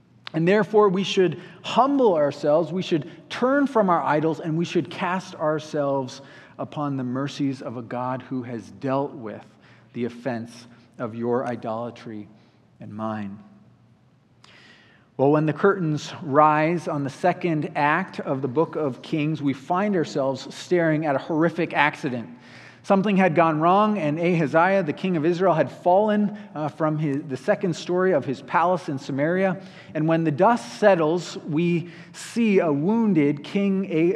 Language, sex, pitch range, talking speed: English, male, 135-185 Hz, 155 wpm